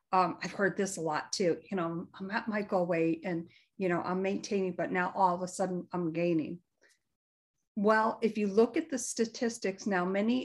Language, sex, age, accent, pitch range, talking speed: English, female, 50-69, American, 180-220 Hz, 205 wpm